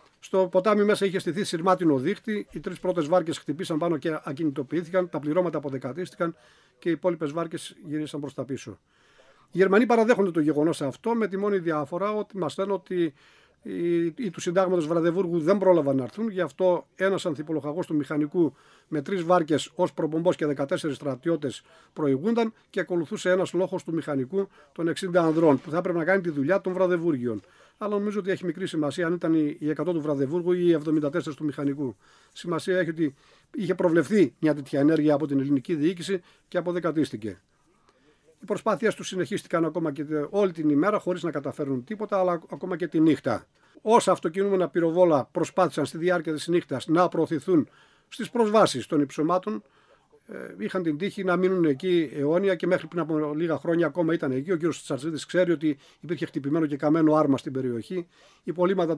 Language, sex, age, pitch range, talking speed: Greek, male, 50-69, 150-185 Hz, 175 wpm